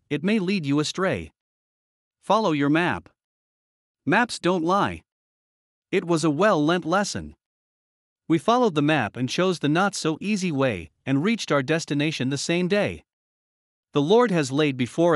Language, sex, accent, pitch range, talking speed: English, male, American, 125-180 Hz, 150 wpm